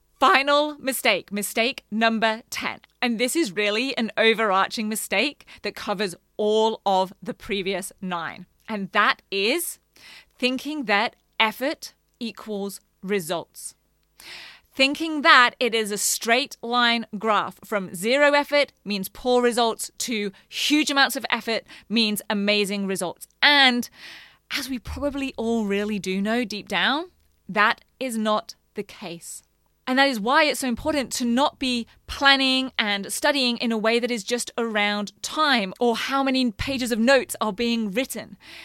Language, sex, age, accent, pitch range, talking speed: English, female, 20-39, British, 205-260 Hz, 145 wpm